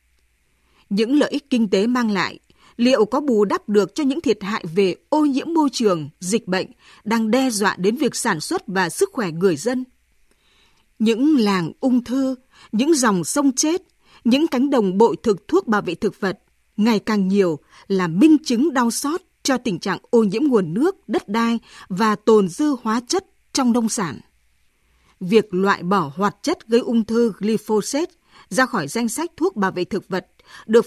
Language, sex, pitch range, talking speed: Vietnamese, female, 195-270 Hz, 190 wpm